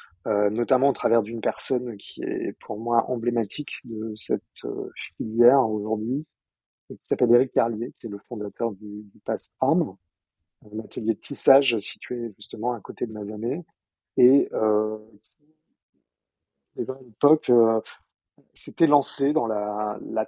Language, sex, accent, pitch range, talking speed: French, male, French, 110-130 Hz, 140 wpm